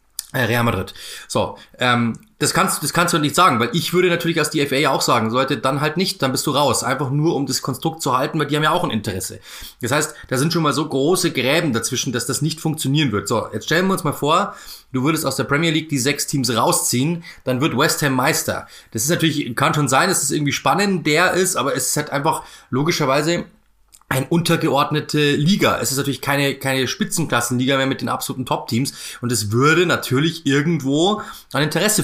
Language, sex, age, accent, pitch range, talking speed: German, male, 30-49, German, 130-165 Hz, 225 wpm